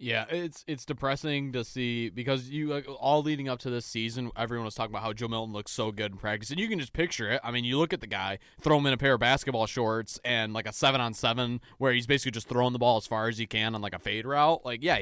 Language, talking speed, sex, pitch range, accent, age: English, 285 wpm, male, 115-145 Hz, American, 20-39